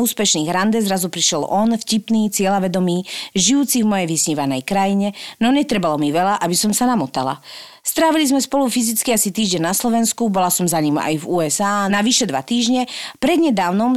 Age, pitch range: 40-59, 180-245 Hz